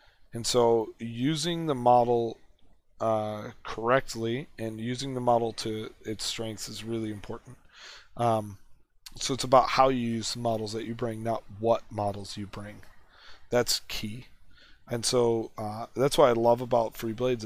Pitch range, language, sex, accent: 110-125 Hz, English, male, American